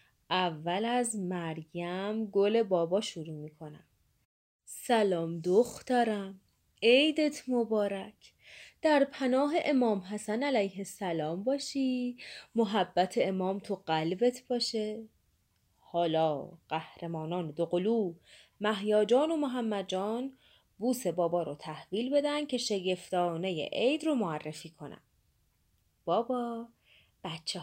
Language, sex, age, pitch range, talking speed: Persian, female, 30-49, 170-235 Hz, 95 wpm